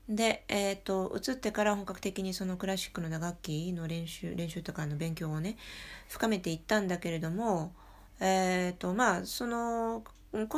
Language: Japanese